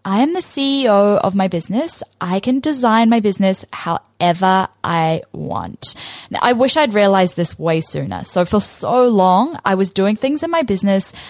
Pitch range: 180-250 Hz